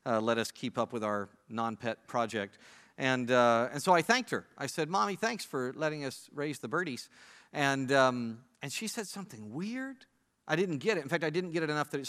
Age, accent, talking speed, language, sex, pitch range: 50-69, American, 230 wpm, English, male, 115-160 Hz